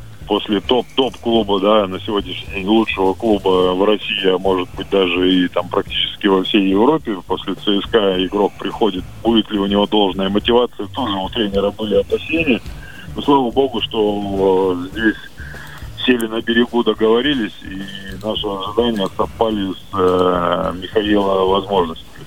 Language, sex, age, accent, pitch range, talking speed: Russian, male, 20-39, native, 95-115 Hz, 140 wpm